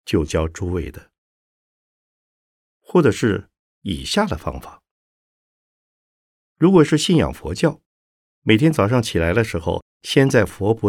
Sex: male